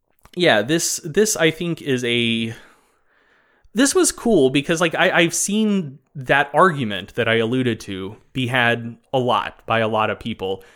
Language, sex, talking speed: English, male, 165 wpm